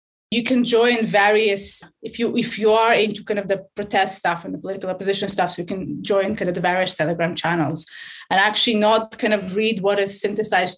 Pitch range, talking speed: 185-230 Hz, 215 wpm